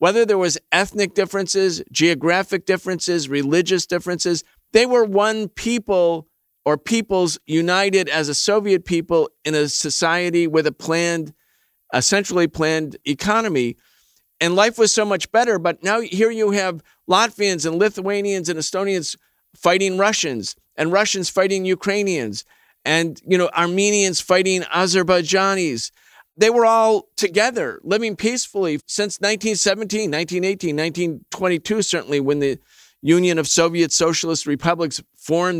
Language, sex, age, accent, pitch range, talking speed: English, male, 40-59, American, 155-195 Hz, 130 wpm